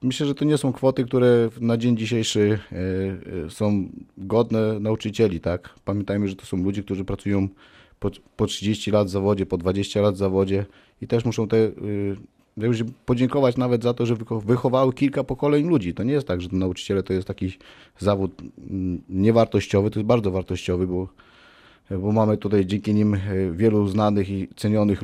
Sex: male